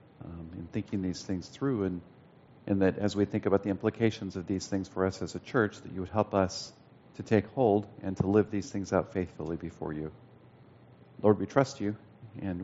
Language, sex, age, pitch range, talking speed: English, male, 50-69, 95-120 Hz, 215 wpm